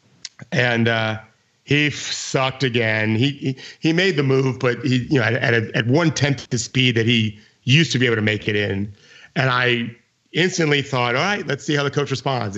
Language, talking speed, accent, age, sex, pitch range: English, 215 wpm, American, 40-59, male, 110-140 Hz